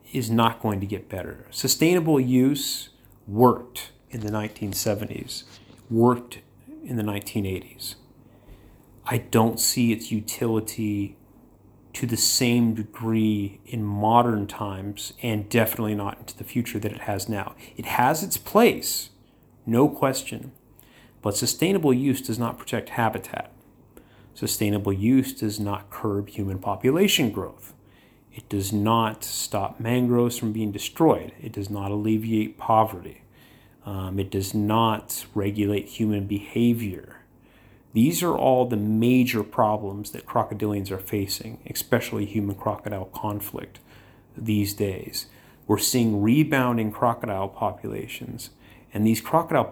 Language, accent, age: English, American, 30-49